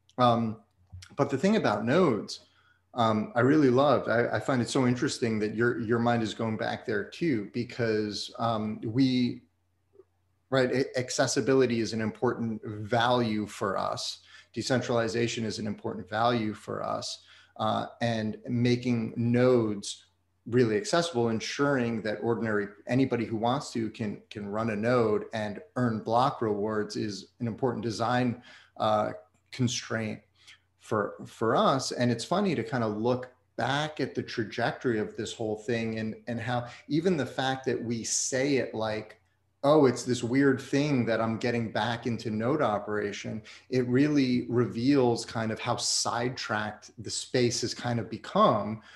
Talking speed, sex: 155 wpm, male